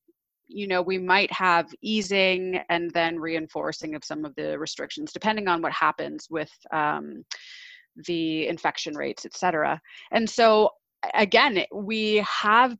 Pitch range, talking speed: 165-210 Hz, 140 wpm